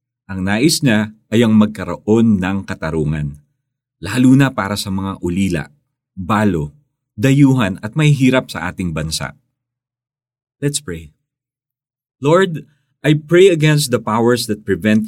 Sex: male